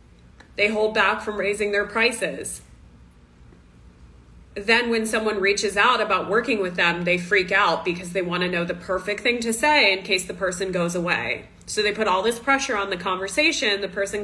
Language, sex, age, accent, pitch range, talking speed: English, female, 20-39, American, 175-220 Hz, 195 wpm